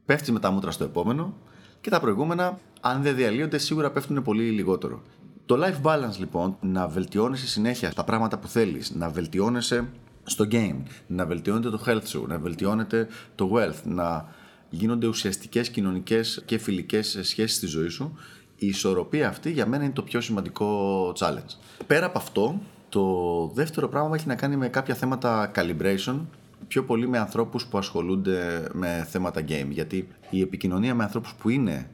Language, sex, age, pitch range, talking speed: Greek, male, 30-49, 95-130 Hz, 165 wpm